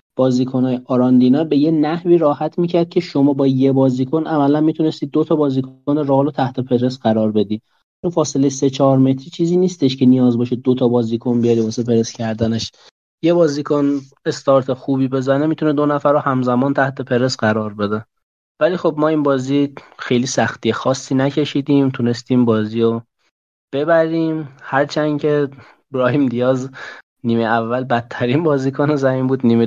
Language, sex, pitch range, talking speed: Persian, male, 115-140 Hz, 155 wpm